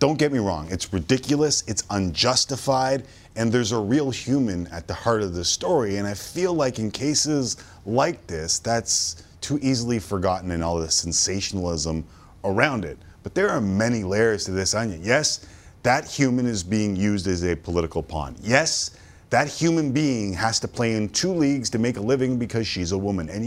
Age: 30-49